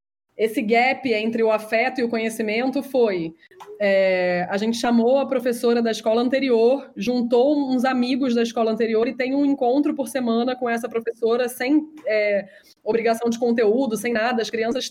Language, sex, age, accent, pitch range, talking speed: Portuguese, female, 20-39, Brazilian, 215-260 Hz, 160 wpm